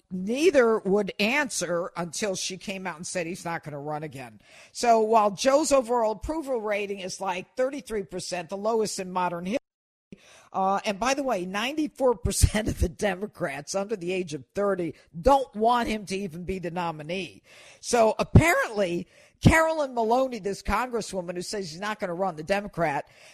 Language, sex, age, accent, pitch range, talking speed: English, female, 50-69, American, 185-235 Hz, 175 wpm